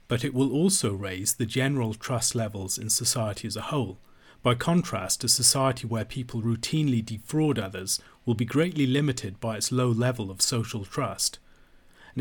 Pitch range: 110-130 Hz